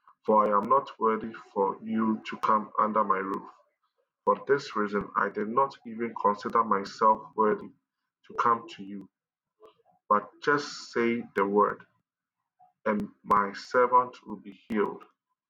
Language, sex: English, male